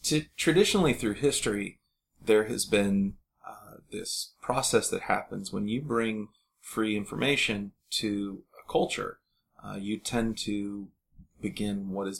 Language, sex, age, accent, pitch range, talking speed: English, male, 30-49, American, 95-110 Hz, 130 wpm